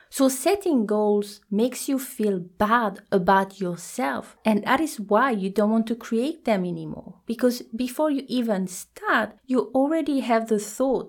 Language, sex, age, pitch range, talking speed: English, female, 30-49, 190-255 Hz, 160 wpm